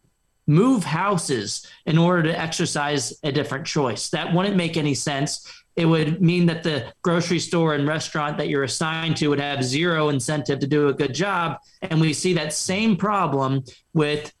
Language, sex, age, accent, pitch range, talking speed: English, male, 30-49, American, 145-175 Hz, 180 wpm